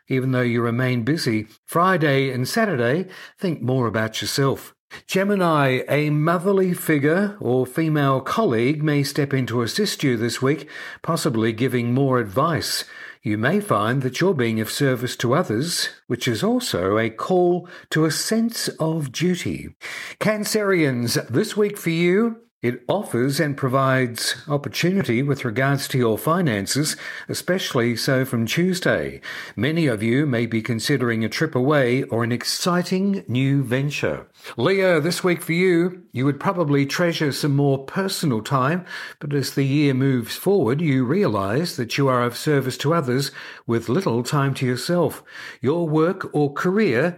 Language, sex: English, male